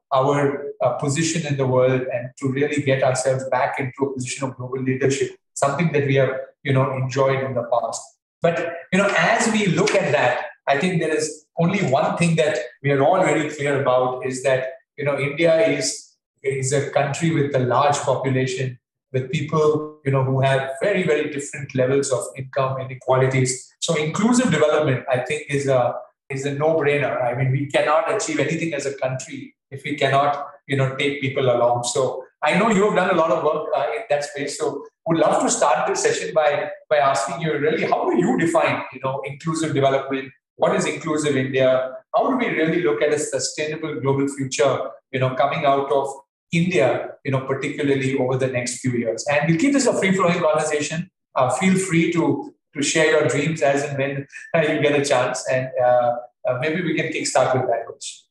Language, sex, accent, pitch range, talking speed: English, male, Indian, 130-155 Hz, 205 wpm